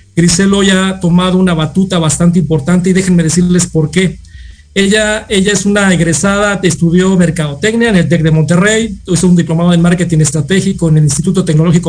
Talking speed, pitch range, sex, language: 185 wpm, 165-190 Hz, male, Spanish